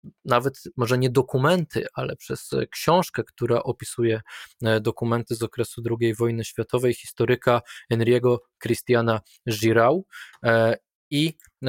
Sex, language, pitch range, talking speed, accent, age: male, Polish, 110-125 Hz, 105 wpm, native, 20-39